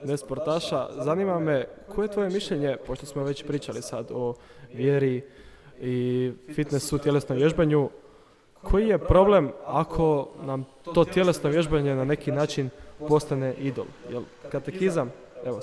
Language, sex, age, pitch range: Croatian, male, 20-39, 135-165 Hz